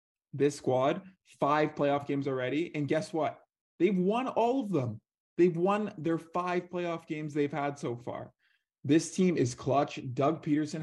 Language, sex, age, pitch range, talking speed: English, male, 20-39, 120-145 Hz, 165 wpm